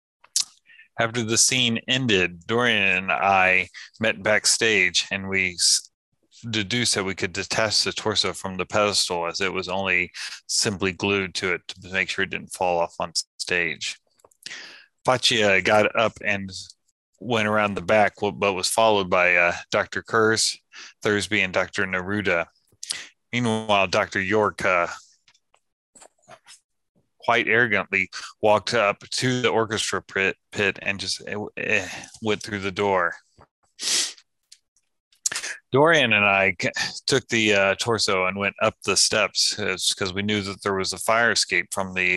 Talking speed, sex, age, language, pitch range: 140 wpm, male, 30-49, English, 95-115 Hz